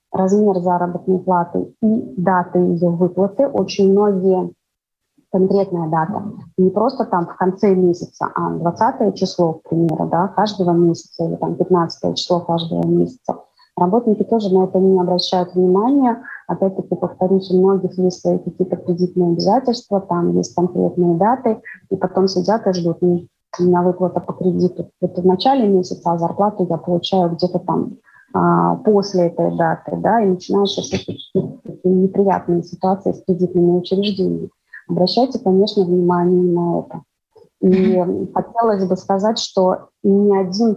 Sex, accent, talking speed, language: female, native, 135 wpm, Russian